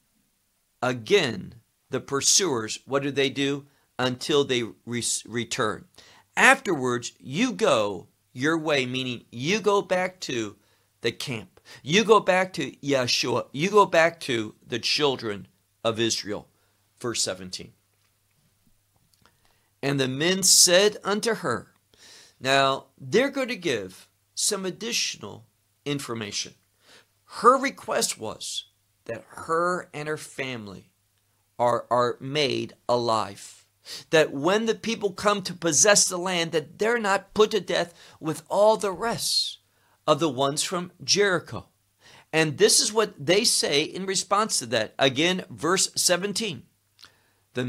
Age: 50-69